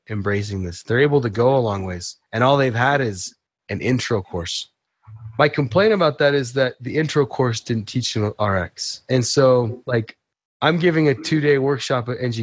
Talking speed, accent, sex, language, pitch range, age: 195 wpm, American, male, English, 105-130 Hz, 20-39